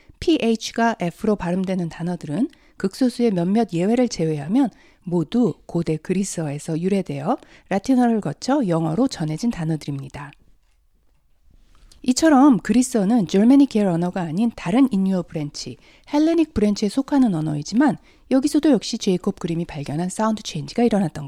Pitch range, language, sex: 160-250 Hz, Korean, female